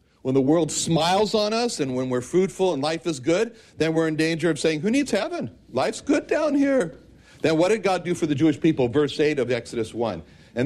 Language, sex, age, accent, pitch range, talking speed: English, male, 60-79, American, 125-190 Hz, 235 wpm